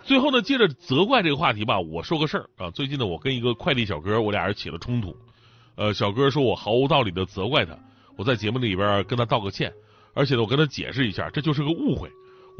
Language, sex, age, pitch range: Chinese, male, 30-49, 115-190 Hz